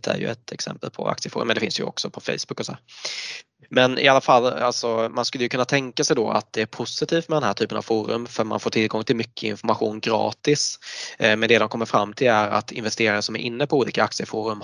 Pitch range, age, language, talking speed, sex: 105-125 Hz, 20-39, Swedish, 250 wpm, male